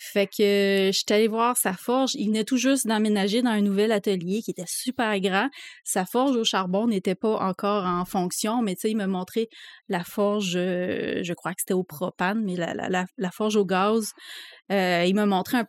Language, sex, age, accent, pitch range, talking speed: French, female, 20-39, Canadian, 190-240 Hz, 210 wpm